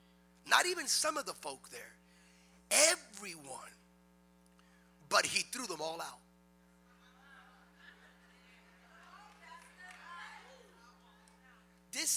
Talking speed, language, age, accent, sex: 75 wpm, English, 40-59, American, male